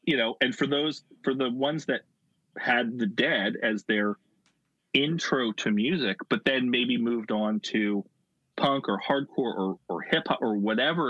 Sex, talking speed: male, 175 wpm